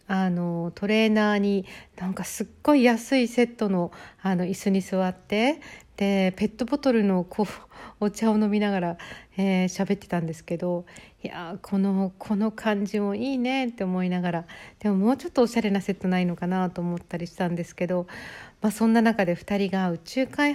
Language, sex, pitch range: Japanese, female, 180-220 Hz